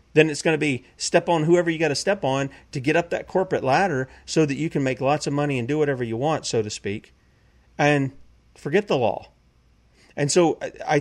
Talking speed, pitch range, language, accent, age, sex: 230 wpm, 125-165 Hz, English, American, 40-59, male